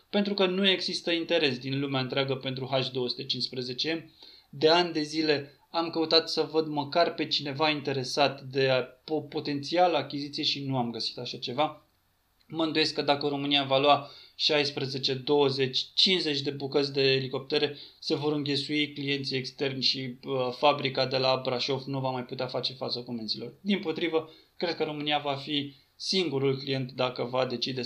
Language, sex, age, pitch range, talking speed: Romanian, male, 20-39, 135-160 Hz, 160 wpm